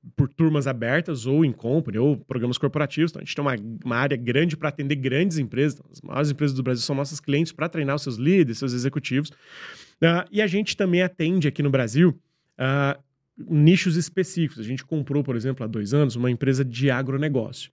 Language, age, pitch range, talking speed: Portuguese, 20-39, 130-160 Hz, 205 wpm